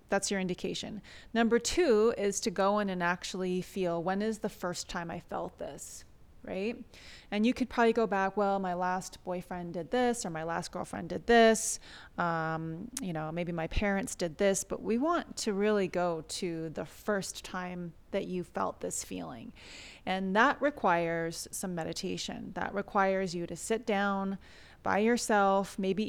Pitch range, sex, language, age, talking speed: 175-210 Hz, female, English, 30-49, 175 wpm